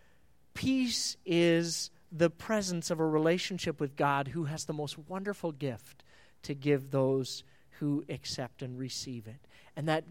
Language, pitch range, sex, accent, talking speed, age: English, 135-170 Hz, male, American, 150 wpm, 40-59